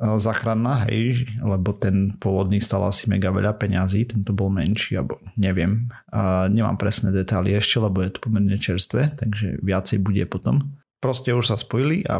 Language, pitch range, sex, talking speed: Slovak, 100-115 Hz, male, 165 wpm